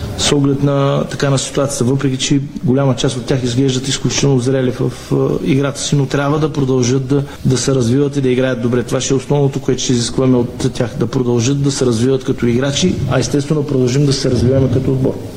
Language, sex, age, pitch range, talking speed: Bulgarian, male, 40-59, 130-145 Hz, 220 wpm